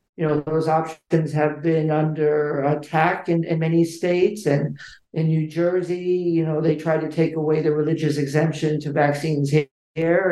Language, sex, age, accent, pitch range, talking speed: English, male, 50-69, American, 150-165 Hz, 170 wpm